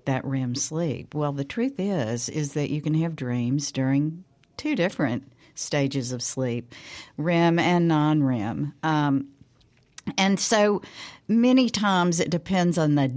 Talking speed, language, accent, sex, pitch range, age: 140 wpm, English, American, female, 140-195 Hz, 60-79